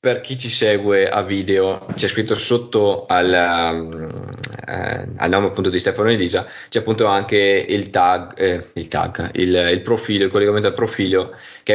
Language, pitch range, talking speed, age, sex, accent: Italian, 95-115 Hz, 165 wpm, 20-39, male, native